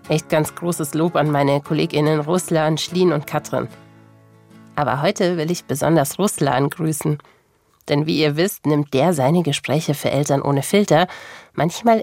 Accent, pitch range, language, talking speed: German, 140-180 Hz, German, 155 wpm